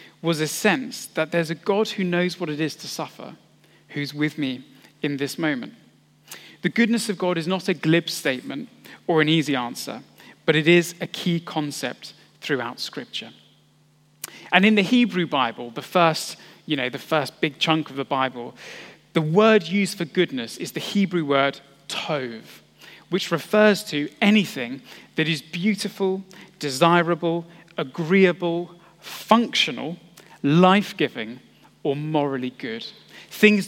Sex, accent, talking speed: male, British, 145 wpm